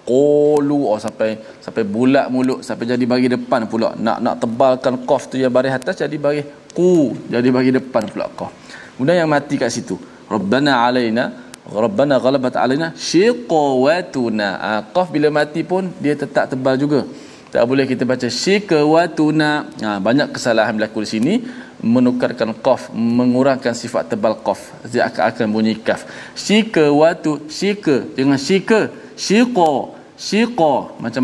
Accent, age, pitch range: Malaysian, 20-39, 125-155 Hz